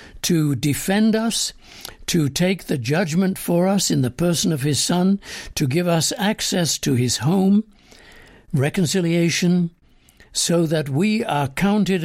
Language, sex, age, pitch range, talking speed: English, male, 60-79, 140-190 Hz, 140 wpm